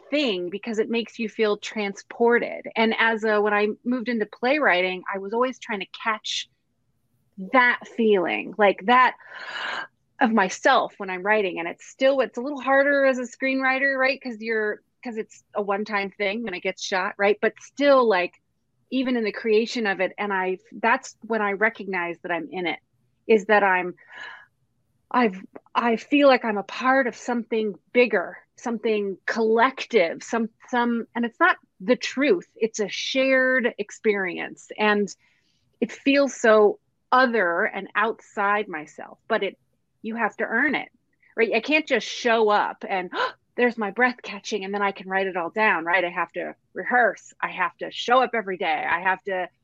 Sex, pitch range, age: female, 195-245 Hz, 30-49